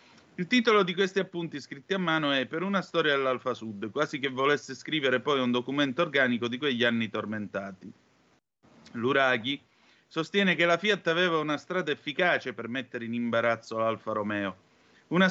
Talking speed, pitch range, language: 165 wpm, 120-165 Hz, Italian